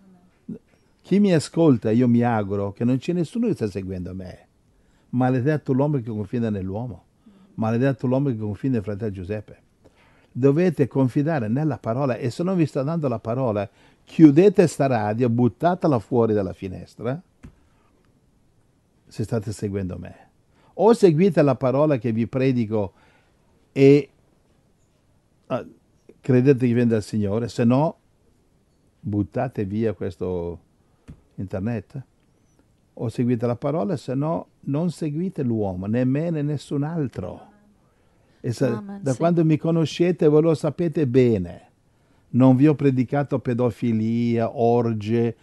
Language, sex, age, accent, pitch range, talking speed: Italian, male, 60-79, native, 105-145 Hz, 125 wpm